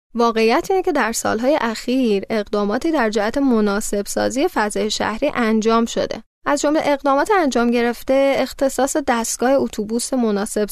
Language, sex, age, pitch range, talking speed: Persian, female, 10-29, 210-265 Hz, 125 wpm